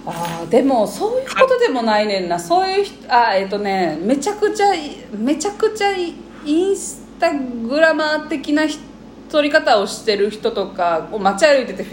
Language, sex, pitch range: Japanese, female, 205-305 Hz